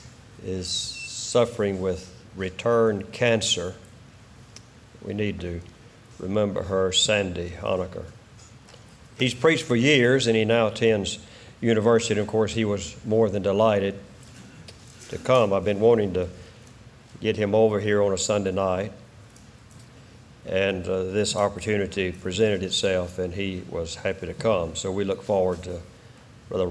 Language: English